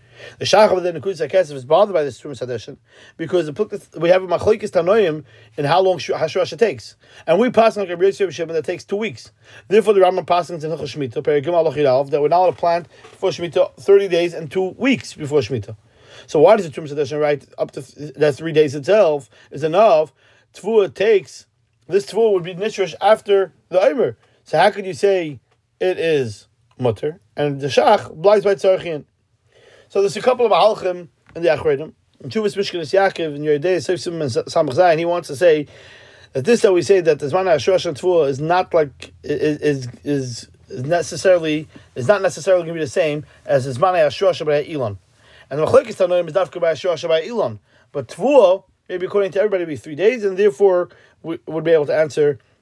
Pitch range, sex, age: 140-190 Hz, male, 30-49